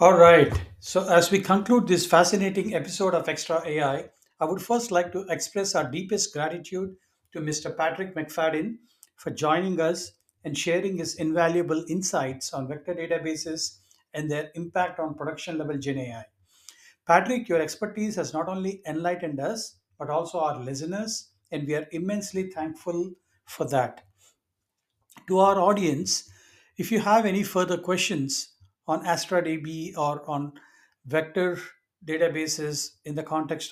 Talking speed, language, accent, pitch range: 140 wpm, English, Indian, 145-180 Hz